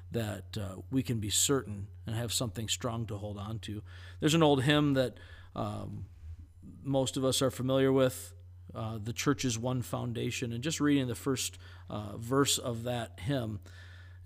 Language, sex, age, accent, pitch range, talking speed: English, male, 50-69, American, 100-135 Hz, 175 wpm